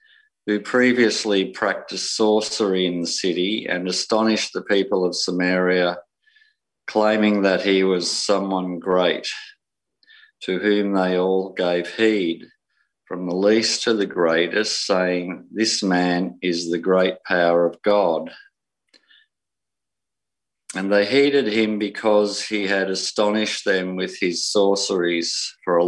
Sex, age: male, 50-69